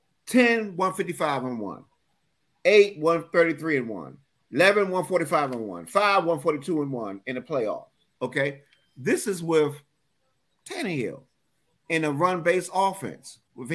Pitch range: 160-215 Hz